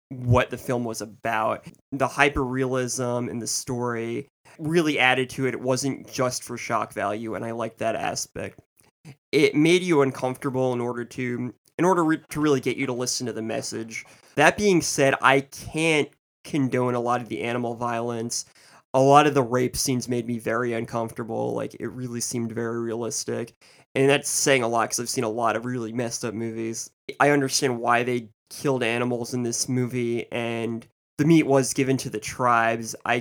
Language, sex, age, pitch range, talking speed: English, male, 20-39, 115-135 Hz, 190 wpm